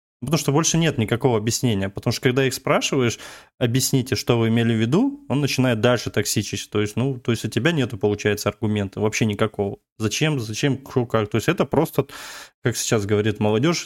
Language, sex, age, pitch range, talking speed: Russian, male, 20-39, 110-135 Hz, 190 wpm